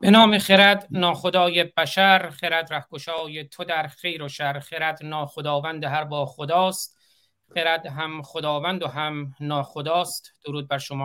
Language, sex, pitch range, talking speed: Persian, male, 150-180 Hz, 140 wpm